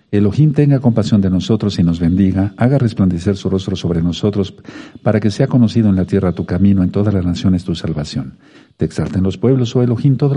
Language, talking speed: Spanish, 210 wpm